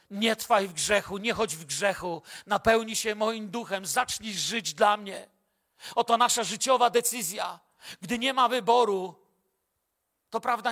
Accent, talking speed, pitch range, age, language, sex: native, 145 wpm, 180-240 Hz, 40-59, Polish, male